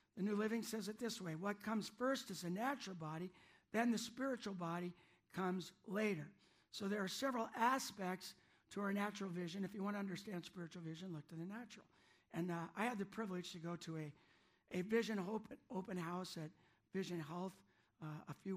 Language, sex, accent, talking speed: English, male, American, 195 wpm